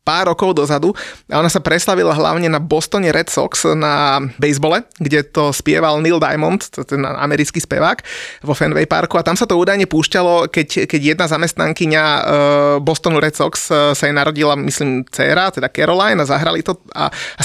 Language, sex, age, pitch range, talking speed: Slovak, male, 20-39, 150-175 Hz, 170 wpm